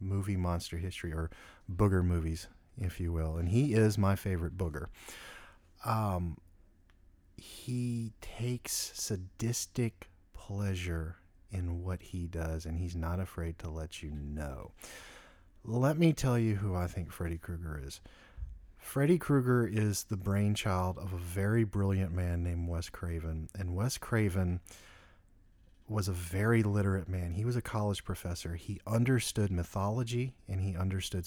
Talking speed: 140 wpm